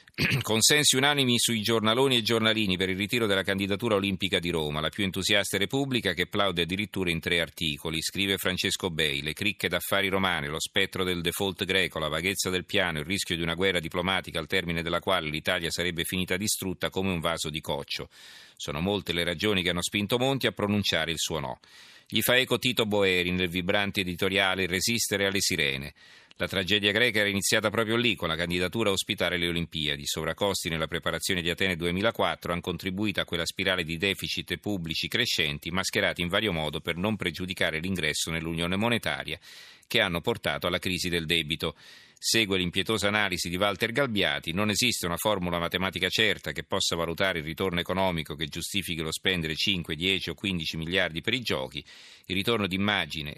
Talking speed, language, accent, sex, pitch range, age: 185 wpm, Italian, native, male, 85-100 Hz, 40-59